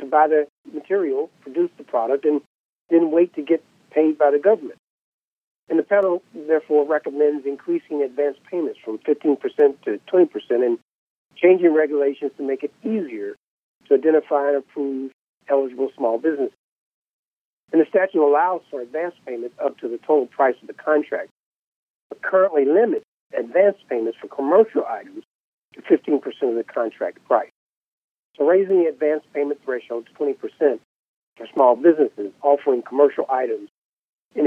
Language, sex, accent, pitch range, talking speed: English, male, American, 140-185 Hz, 150 wpm